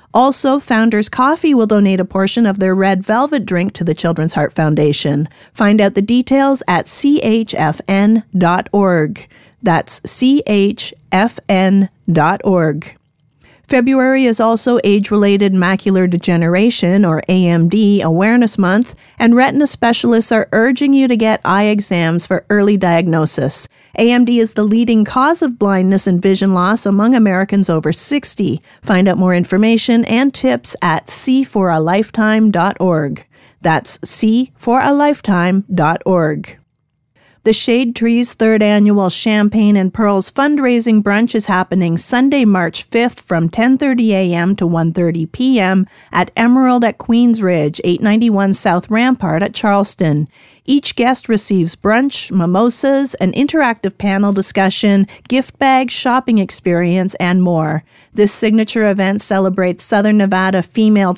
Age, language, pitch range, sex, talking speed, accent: 40-59, English, 185-235 Hz, female, 125 wpm, American